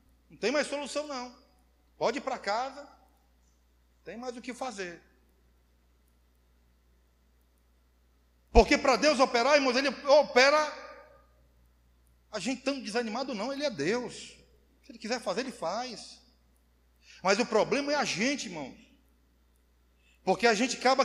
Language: Portuguese